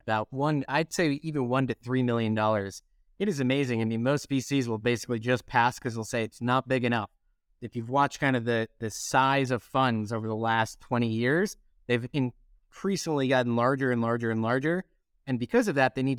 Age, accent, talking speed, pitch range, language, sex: 30-49, American, 210 wpm, 115-140 Hz, English, male